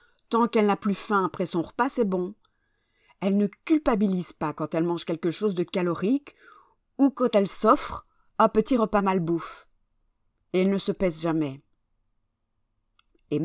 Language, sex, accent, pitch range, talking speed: French, female, French, 145-205 Hz, 165 wpm